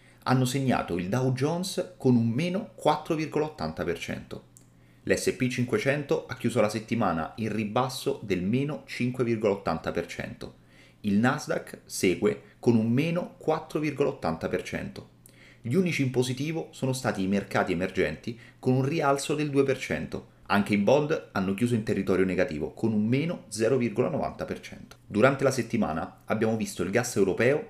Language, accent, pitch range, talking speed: Italian, native, 110-150 Hz, 130 wpm